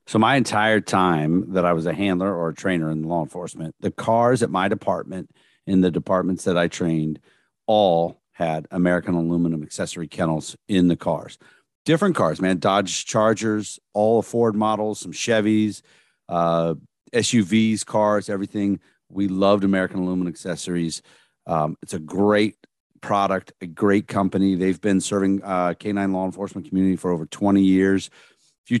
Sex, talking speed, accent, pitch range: male, 160 wpm, American, 95-110 Hz